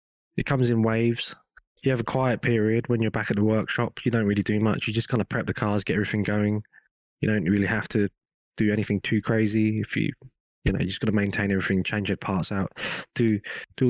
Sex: male